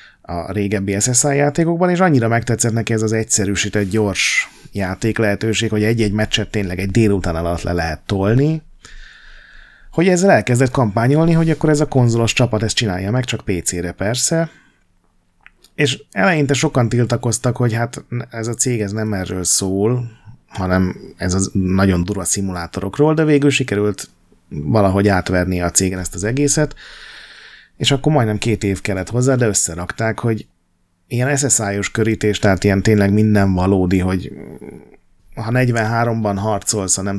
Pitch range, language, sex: 95-120 Hz, Hungarian, male